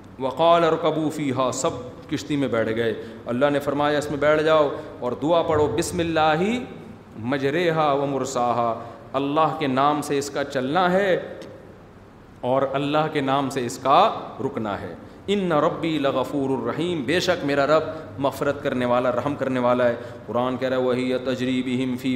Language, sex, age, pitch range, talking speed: Urdu, male, 40-59, 130-175 Hz, 170 wpm